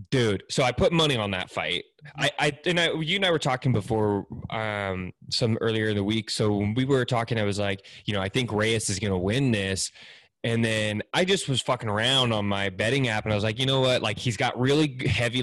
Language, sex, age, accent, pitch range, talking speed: English, male, 20-39, American, 105-130 Hz, 250 wpm